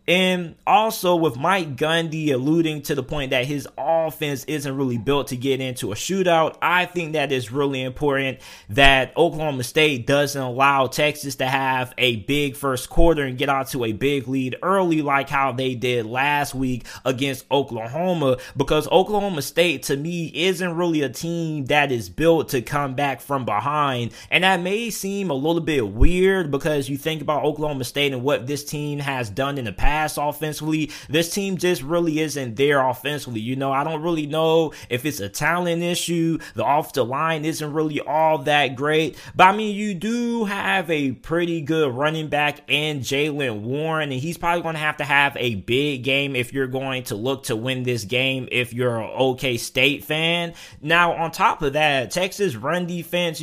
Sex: male